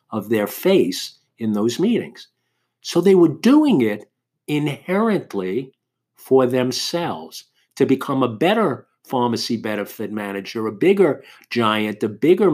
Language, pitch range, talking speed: English, 110-160 Hz, 125 wpm